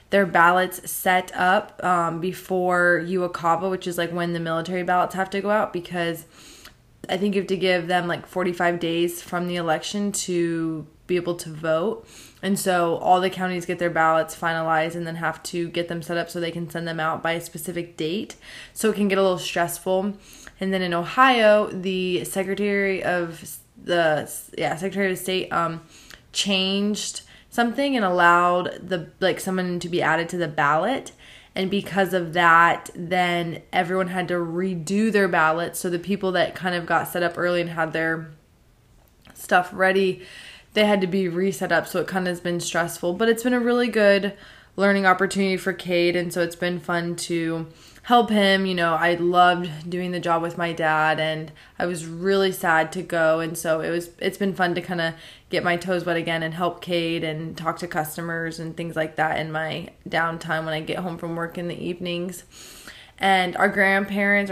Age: 20-39